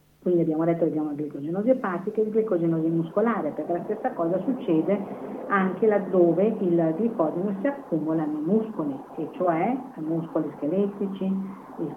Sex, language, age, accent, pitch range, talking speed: female, Italian, 50-69, native, 155-195 Hz, 155 wpm